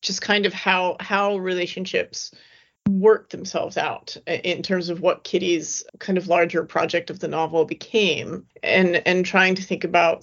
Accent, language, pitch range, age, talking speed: American, English, 180-210 Hz, 30-49, 165 wpm